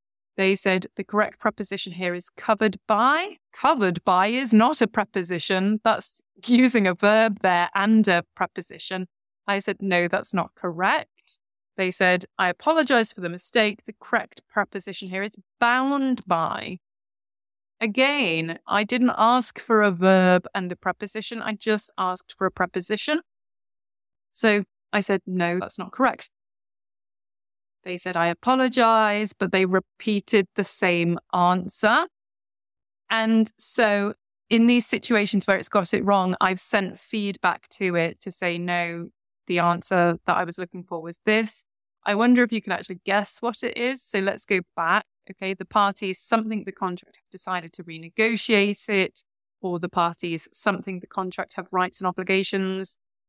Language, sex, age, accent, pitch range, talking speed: English, female, 20-39, British, 180-215 Hz, 155 wpm